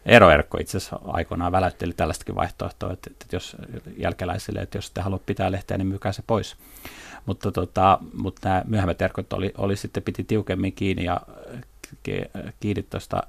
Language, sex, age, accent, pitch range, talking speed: Finnish, male, 30-49, native, 95-105 Hz, 150 wpm